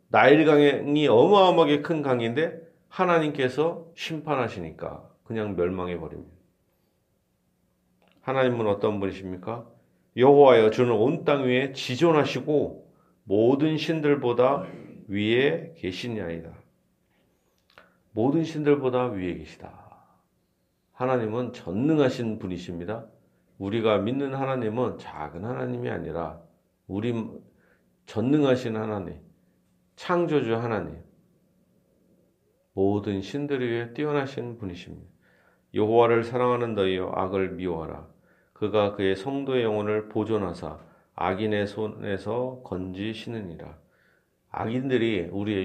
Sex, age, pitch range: male, 40-59, 95-130 Hz